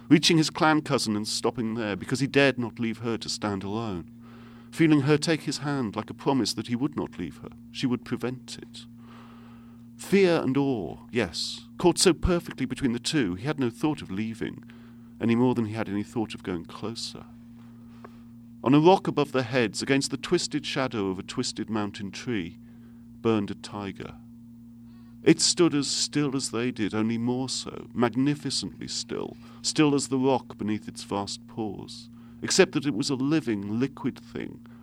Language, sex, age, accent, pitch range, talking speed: English, male, 50-69, British, 115-130 Hz, 185 wpm